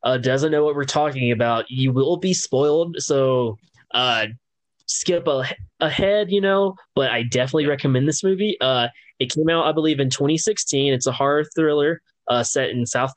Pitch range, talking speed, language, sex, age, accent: 120-155 Hz, 180 wpm, English, male, 20-39, American